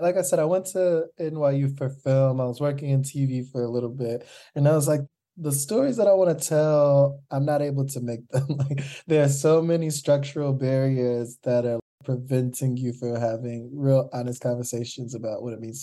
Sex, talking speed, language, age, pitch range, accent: male, 210 wpm, English, 20-39, 120-145 Hz, American